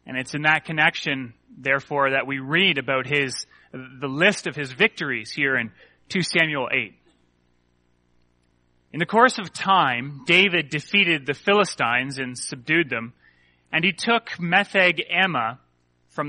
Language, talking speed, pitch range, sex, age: English, 145 wpm, 130-170 Hz, male, 30-49